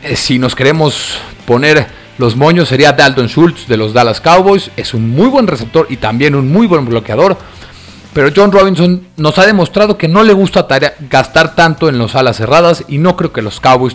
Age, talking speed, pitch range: 40-59, 200 wpm, 120-175 Hz